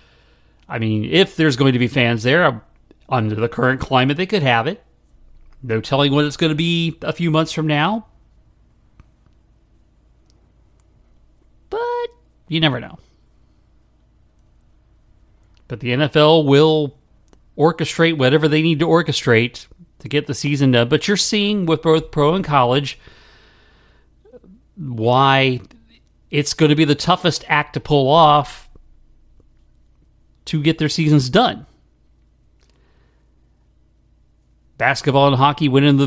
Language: English